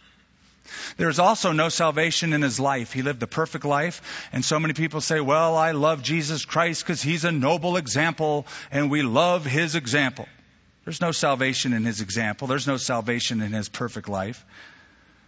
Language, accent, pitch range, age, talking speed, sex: English, American, 115-160 Hz, 40-59, 175 wpm, male